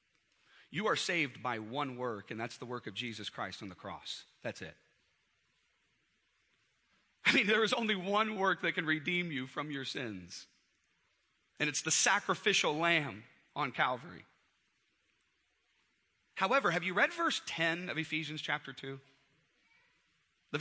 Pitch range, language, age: 145-225 Hz, English, 40-59